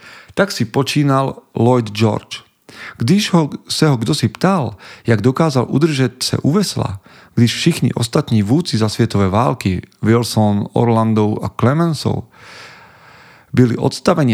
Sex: male